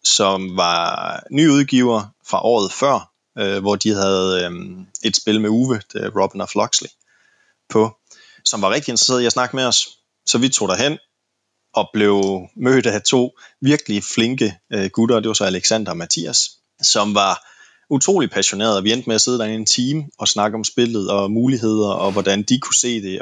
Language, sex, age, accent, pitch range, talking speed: Danish, male, 20-39, native, 100-120 Hz, 185 wpm